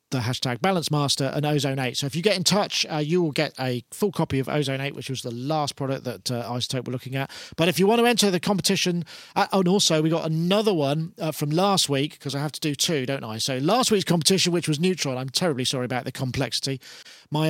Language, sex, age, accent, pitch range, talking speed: English, male, 40-59, British, 140-180 Hz, 255 wpm